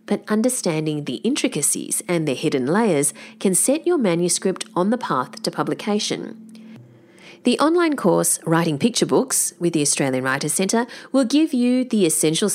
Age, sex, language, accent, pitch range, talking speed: 40-59, female, English, Australian, 160-240 Hz, 160 wpm